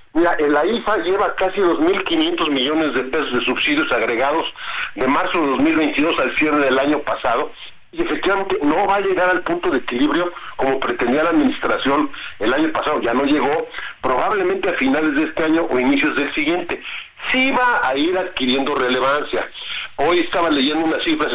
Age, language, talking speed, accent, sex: 50-69, Spanish, 175 wpm, Mexican, male